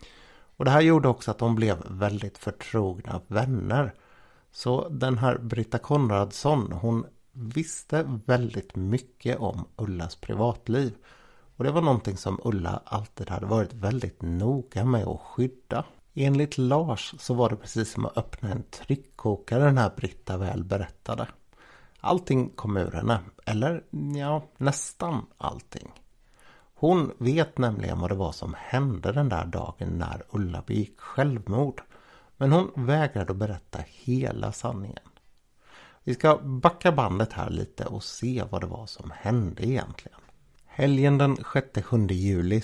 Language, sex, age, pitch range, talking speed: Swedish, male, 60-79, 100-130 Hz, 140 wpm